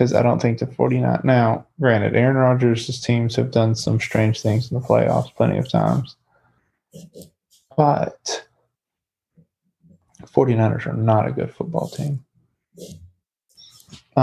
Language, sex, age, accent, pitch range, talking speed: English, male, 20-39, American, 110-150 Hz, 130 wpm